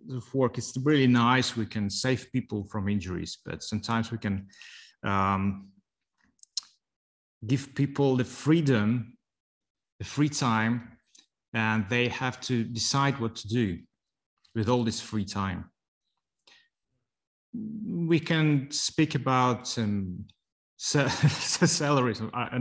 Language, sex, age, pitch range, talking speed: English, male, 30-49, 110-140 Hz, 120 wpm